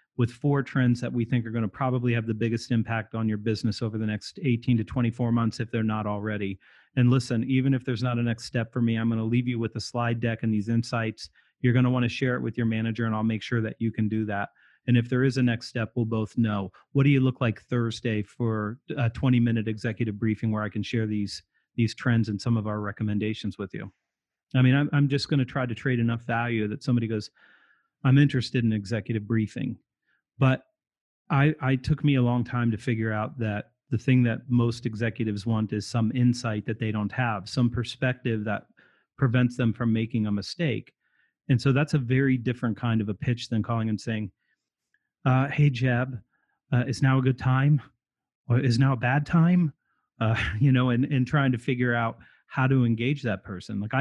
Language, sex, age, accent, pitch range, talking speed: English, male, 40-59, American, 110-130 Hz, 225 wpm